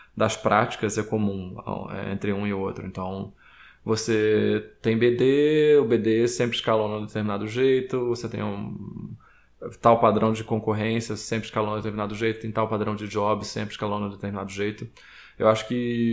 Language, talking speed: Portuguese, 165 wpm